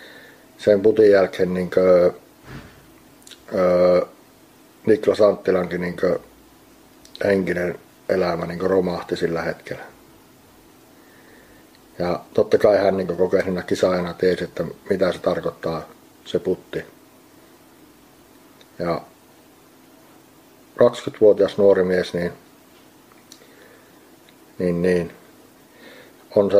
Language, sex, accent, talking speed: Finnish, male, native, 70 wpm